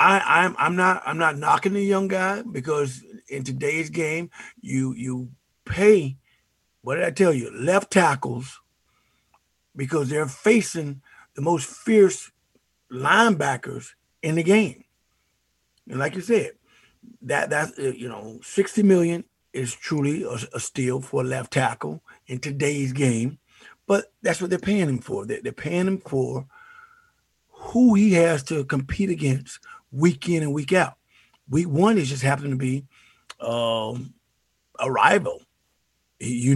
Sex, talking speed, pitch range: male, 145 wpm, 125-170 Hz